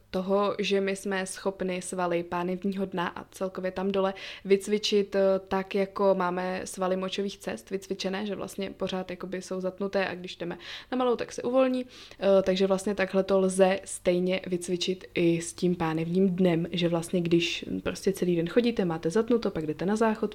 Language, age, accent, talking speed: Czech, 20-39, native, 170 wpm